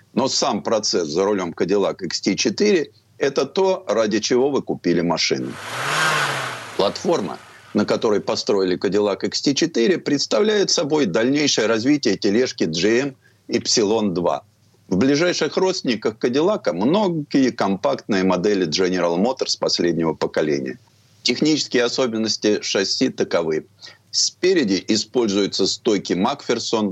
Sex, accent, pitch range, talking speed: male, native, 95-155 Hz, 110 wpm